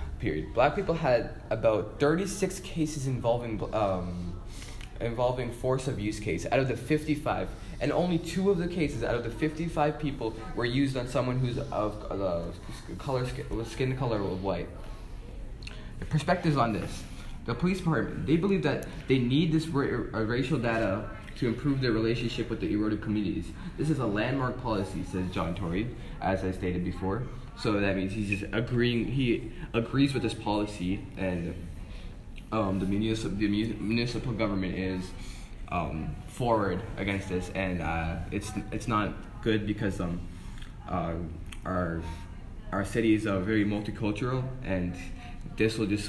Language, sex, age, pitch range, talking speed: English, male, 10-29, 95-125 Hz, 160 wpm